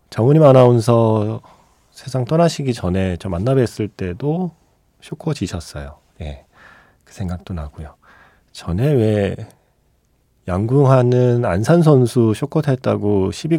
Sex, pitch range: male, 95-140 Hz